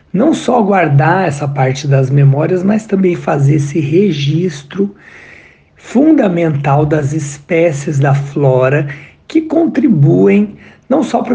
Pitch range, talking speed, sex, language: 140-180 Hz, 115 wpm, male, Portuguese